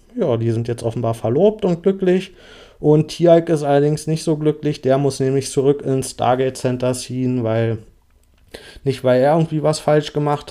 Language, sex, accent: German, male, German